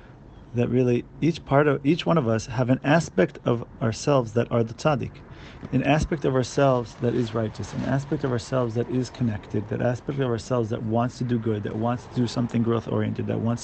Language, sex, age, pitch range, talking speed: English, male, 40-59, 115-140 Hz, 215 wpm